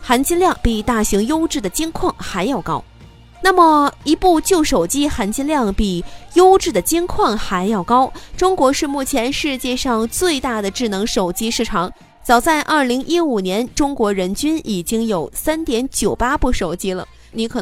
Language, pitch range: Chinese, 205-290 Hz